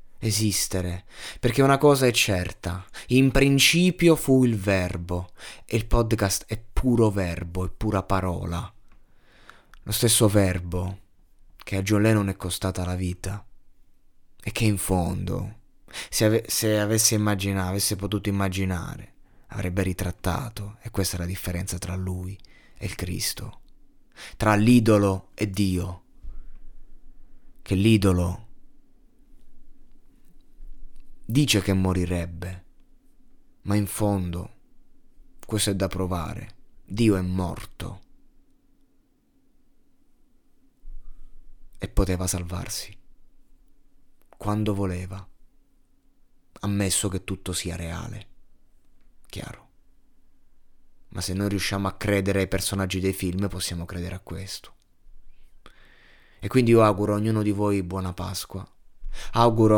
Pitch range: 95-110 Hz